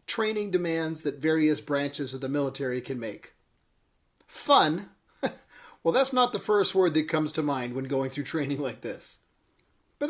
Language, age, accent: English, 40-59, American